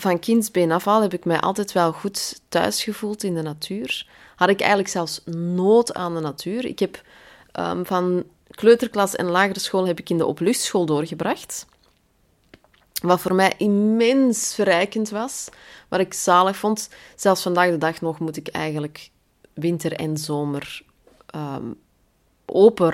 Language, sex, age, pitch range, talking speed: Dutch, female, 20-39, 150-185 Hz, 145 wpm